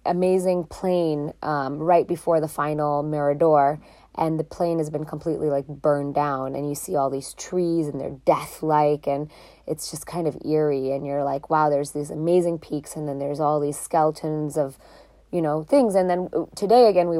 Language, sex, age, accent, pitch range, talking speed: English, female, 20-39, American, 150-170 Hz, 190 wpm